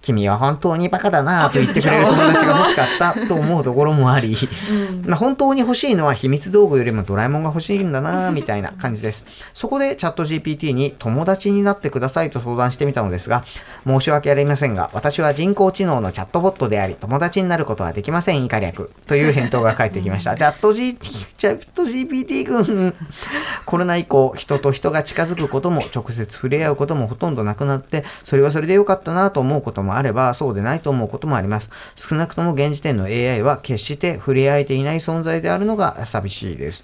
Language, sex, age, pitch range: Japanese, male, 40-59, 115-180 Hz